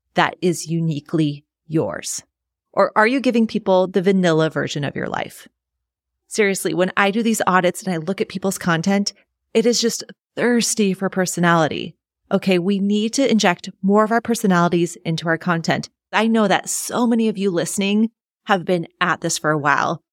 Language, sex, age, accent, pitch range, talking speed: English, female, 30-49, American, 165-210 Hz, 180 wpm